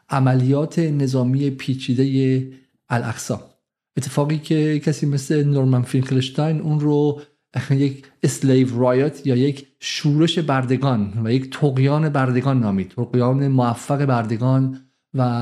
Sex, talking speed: male, 110 wpm